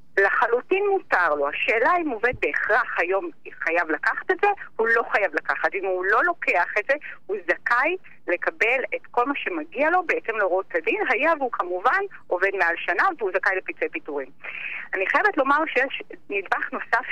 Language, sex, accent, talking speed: Hebrew, female, native, 175 wpm